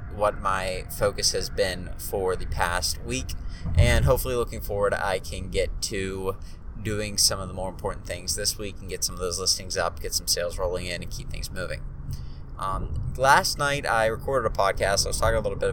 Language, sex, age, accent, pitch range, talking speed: English, male, 20-39, American, 90-110 Hz, 210 wpm